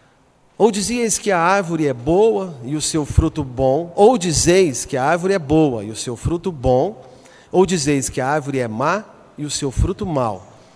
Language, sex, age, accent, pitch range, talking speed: Portuguese, male, 40-59, Brazilian, 125-170 Hz, 200 wpm